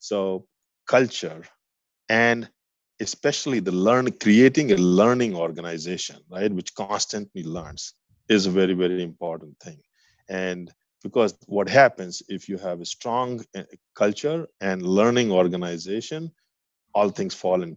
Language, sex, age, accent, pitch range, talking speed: English, male, 50-69, Indian, 90-110 Hz, 125 wpm